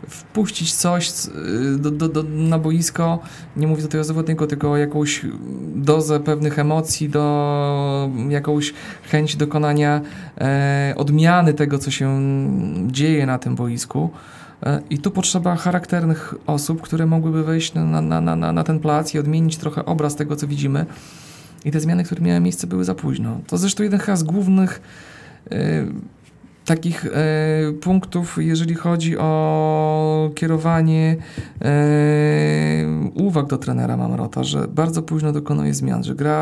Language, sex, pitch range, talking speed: Polish, male, 120-160 Hz, 140 wpm